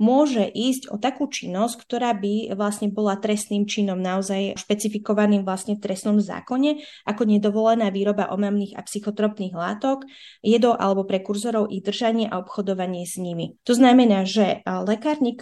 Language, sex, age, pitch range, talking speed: Slovak, female, 20-39, 195-230 Hz, 145 wpm